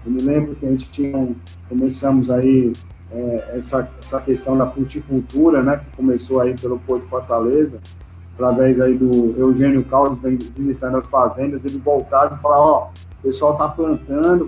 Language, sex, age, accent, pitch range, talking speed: Portuguese, male, 40-59, Brazilian, 125-150 Hz, 170 wpm